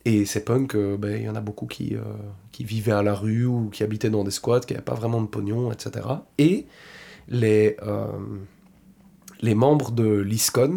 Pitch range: 105-130 Hz